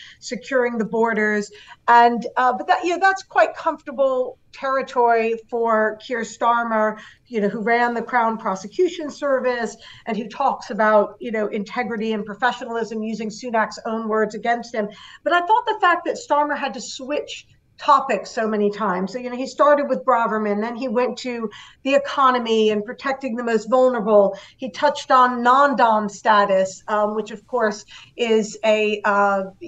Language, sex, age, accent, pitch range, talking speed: English, female, 50-69, American, 215-260 Hz, 170 wpm